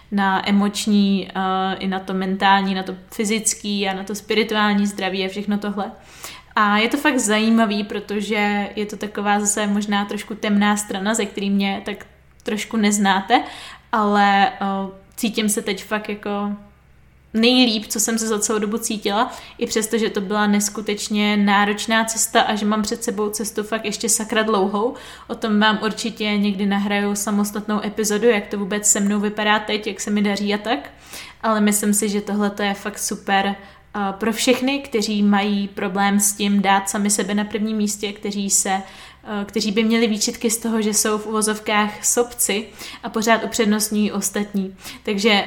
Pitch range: 200-220 Hz